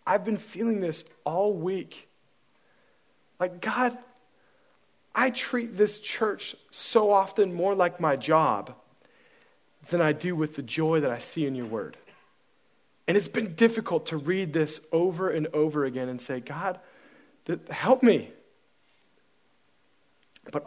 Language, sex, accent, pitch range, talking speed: English, male, American, 145-210 Hz, 135 wpm